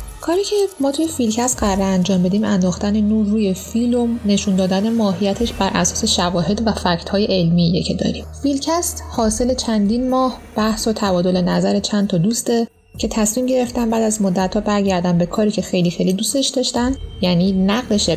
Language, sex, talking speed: Persian, female, 170 wpm